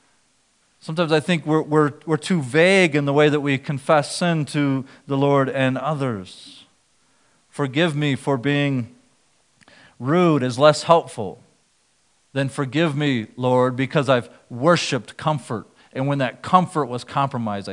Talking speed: 140 wpm